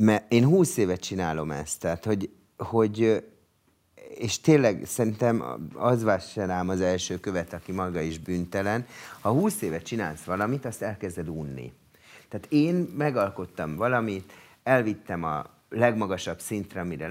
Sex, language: male, Hungarian